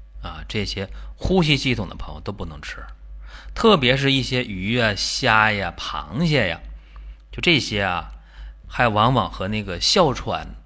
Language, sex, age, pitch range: Chinese, male, 30-49, 75-125 Hz